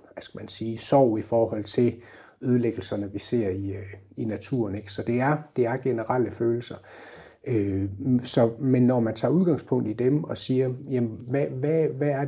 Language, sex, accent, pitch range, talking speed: Danish, male, native, 110-140 Hz, 180 wpm